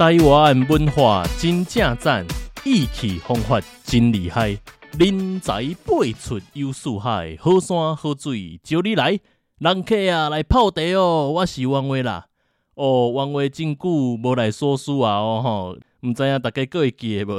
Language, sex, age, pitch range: Chinese, male, 20-39, 105-140 Hz